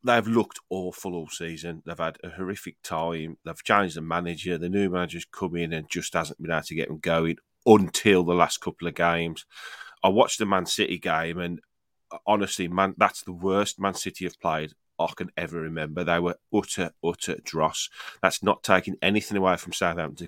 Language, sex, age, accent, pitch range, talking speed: English, male, 30-49, British, 85-95 Hz, 195 wpm